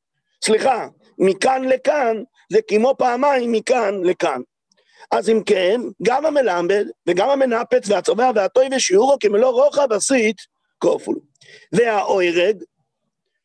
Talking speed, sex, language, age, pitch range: 105 wpm, male, English, 50-69, 215-315 Hz